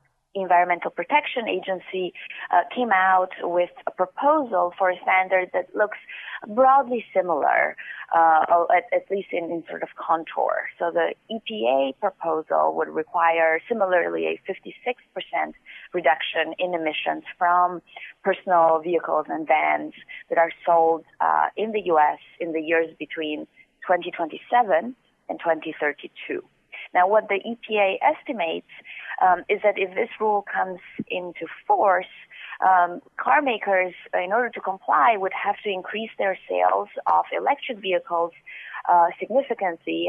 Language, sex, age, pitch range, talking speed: English, female, 30-49, 165-195 Hz, 130 wpm